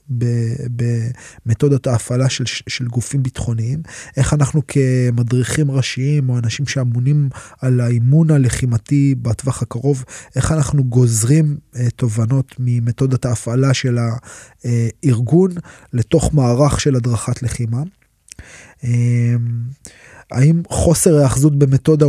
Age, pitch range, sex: 20-39, 120-145 Hz, male